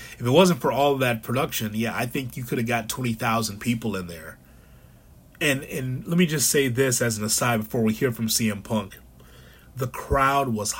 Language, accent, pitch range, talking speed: English, American, 110-135 Hz, 210 wpm